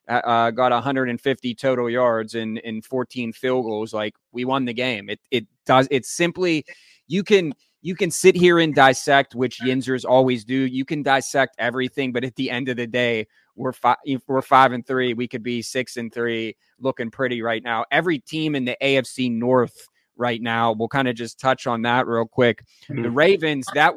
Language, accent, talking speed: English, American, 200 wpm